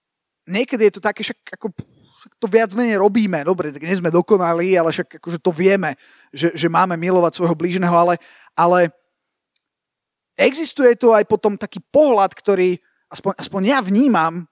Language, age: Slovak, 20-39